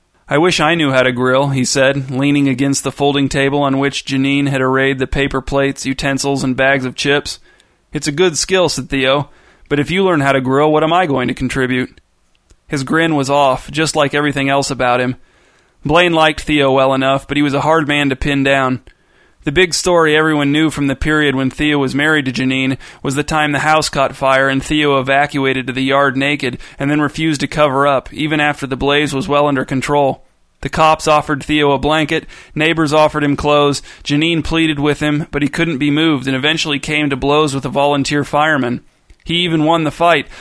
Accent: American